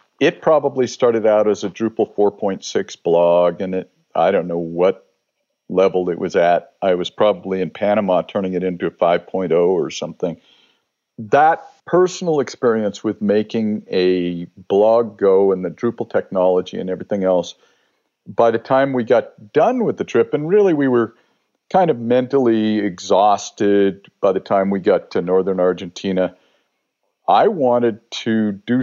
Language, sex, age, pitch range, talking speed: English, male, 50-69, 95-120 Hz, 155 wpm